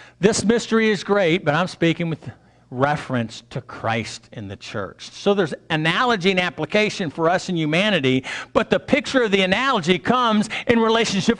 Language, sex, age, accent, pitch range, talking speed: English, male, 50-69, American, 115-180 Hz, 170 wpm